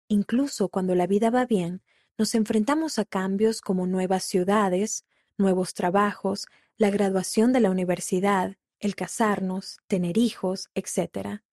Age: 20-39